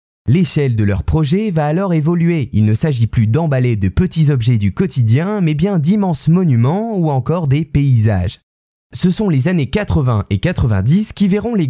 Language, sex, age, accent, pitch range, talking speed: French, male, 20-39, French, 120-175 Hz, 180 wpm